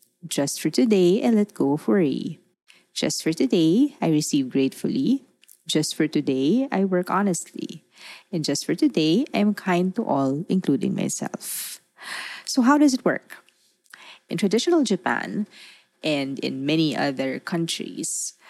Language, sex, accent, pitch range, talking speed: English, female, Filipino, 155-205 Hz, 145 wpm